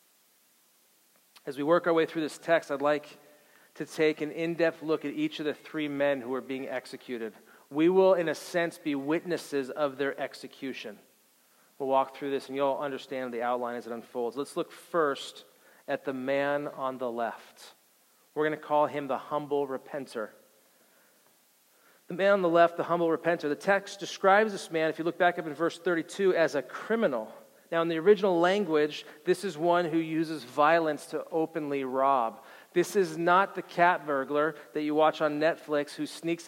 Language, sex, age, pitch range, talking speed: English, male, 40-59, 140-165 Hz, 190 wpm